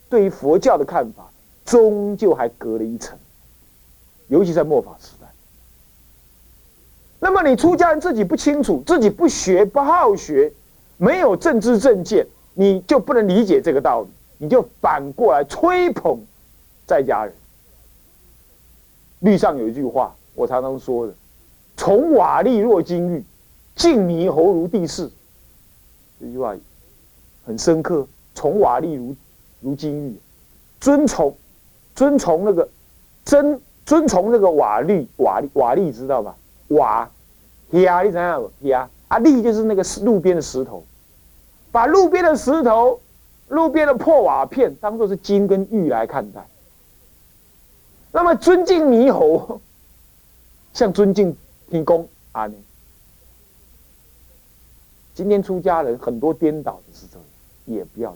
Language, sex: Chinese, male